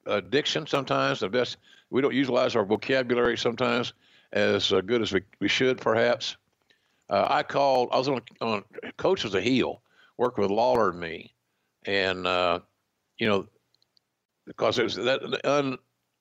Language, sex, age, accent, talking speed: English, male, 60-79, American, 155 wpm